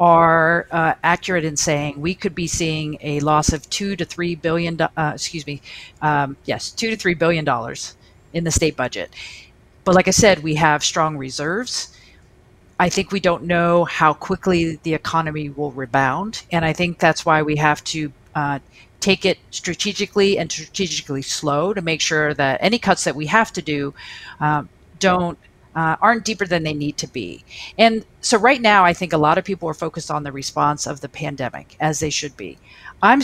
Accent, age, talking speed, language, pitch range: American, 40-59, 195 wpm, English, 150-190 Hz